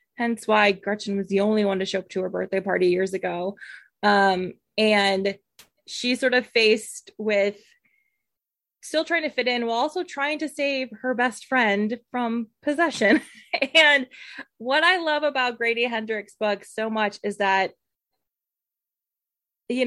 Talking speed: 155 wpm